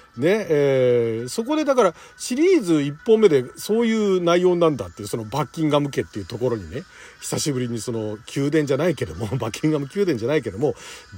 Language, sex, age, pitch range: Japanese, male, 40-59, 140-225 Hz